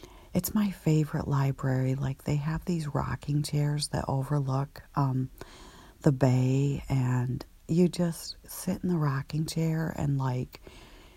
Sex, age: female, 50-69